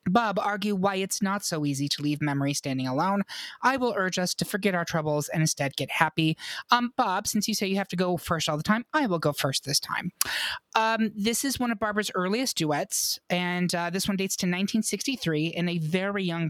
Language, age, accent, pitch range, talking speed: English, 30-49, American, 160-205 Hz, 225 wpm